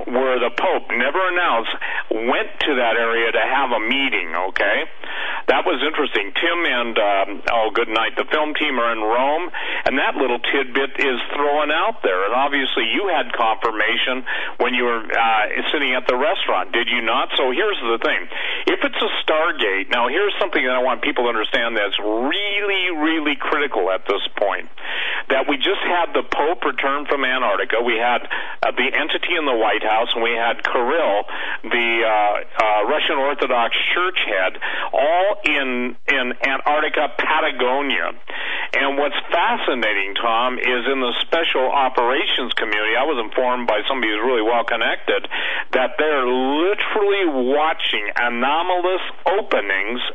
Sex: male